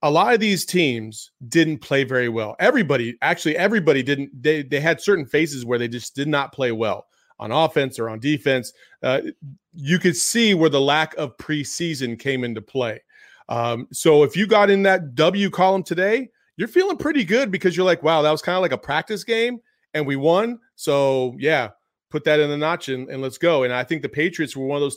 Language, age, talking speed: English, 30-49, 225 wpm